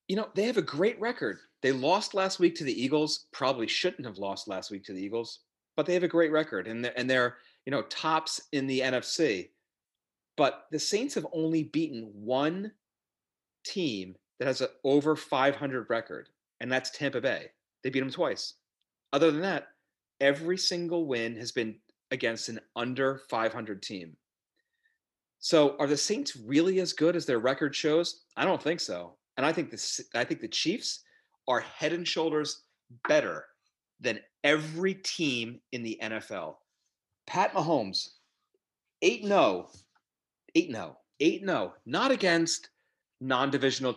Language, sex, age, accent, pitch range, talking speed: English, male, 40-59, American, 120-160 Hz, 155 wpm